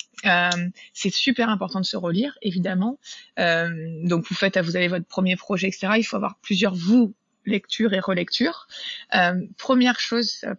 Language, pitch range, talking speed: French, 195-235 Hz, 175 wpm